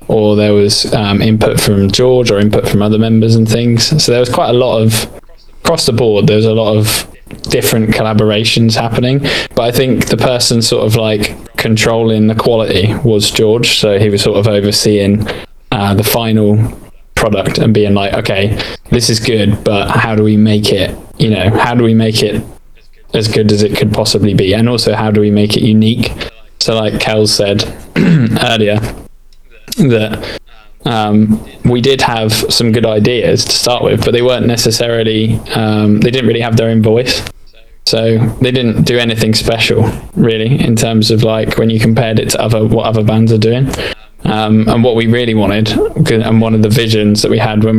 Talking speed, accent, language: 195 wpm, British, English